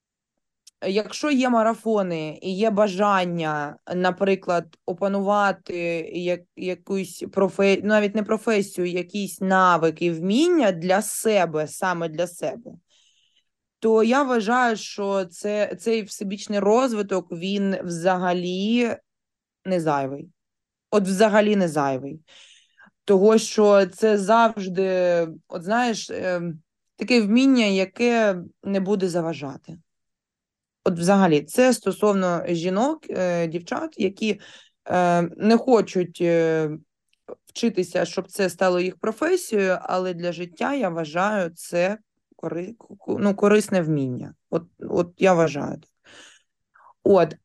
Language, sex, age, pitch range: Ukrainian, female, 20-39, 175-220 Hz